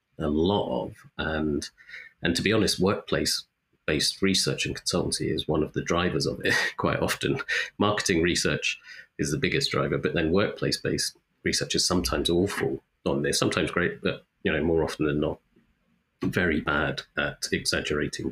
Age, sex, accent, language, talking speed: 30-49, male, British, English, 160 wpm